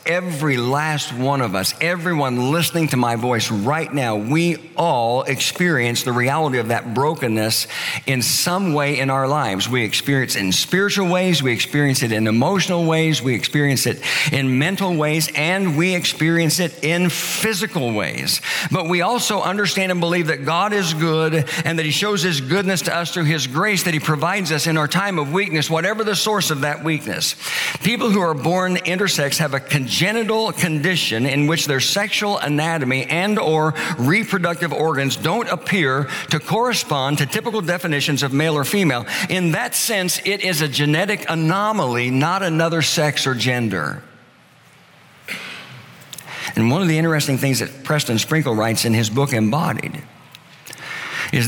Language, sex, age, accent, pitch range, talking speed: English, male, 50-69, American, 130-175 Hz, 170 wpm